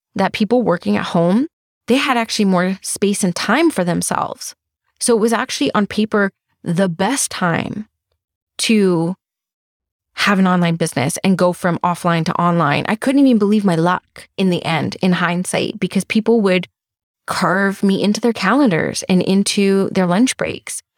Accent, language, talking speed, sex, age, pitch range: American, English, 165 wpm, female, 20-39, 180-225 Hz